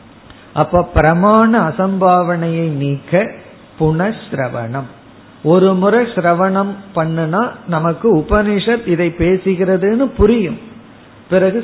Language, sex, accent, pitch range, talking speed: Tamil, male, native, 150-195 Hz, 60 wpm